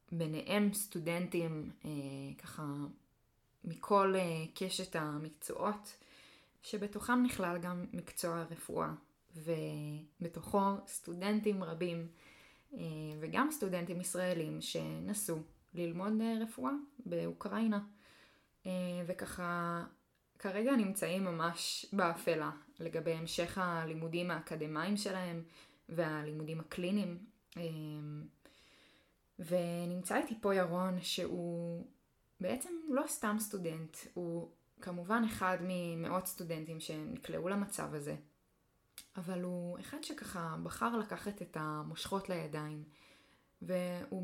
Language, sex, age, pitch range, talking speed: Hebrew, female, 20-39, 165-200 Hz, 90 wpm